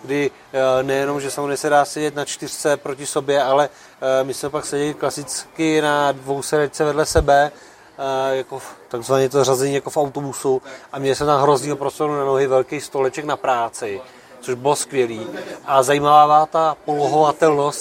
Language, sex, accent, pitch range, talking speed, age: Czech, male, native, 135-160 Hz, 160 wpm, 20-39